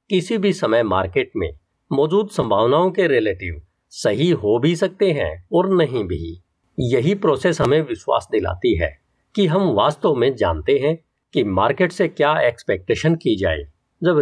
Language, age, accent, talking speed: Hindi, 50-69, native, 155 wpm